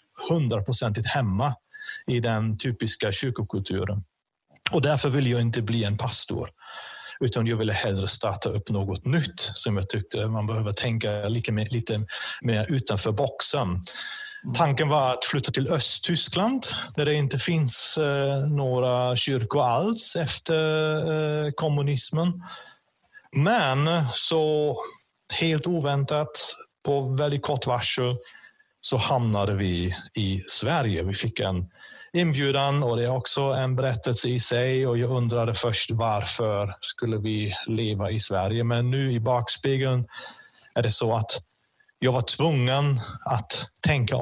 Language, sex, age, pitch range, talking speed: Swedish, male, 30-49, 110-140 Hz, 130 wpm